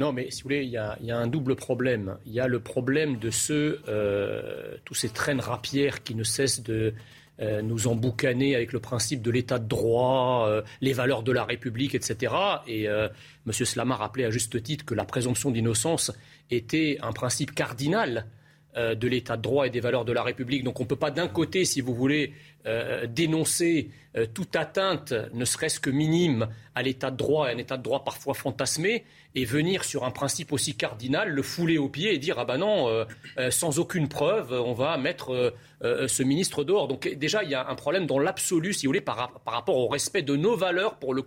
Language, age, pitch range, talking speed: French, 40-59, 125-150 Hz, 220 wpm